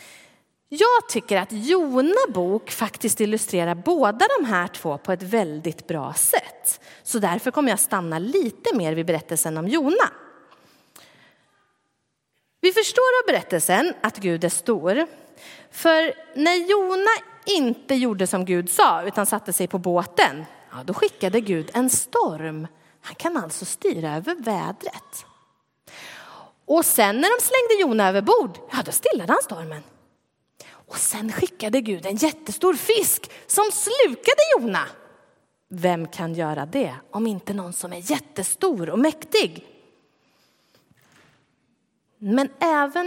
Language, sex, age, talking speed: Swedish, female, 30-49, 130 wpm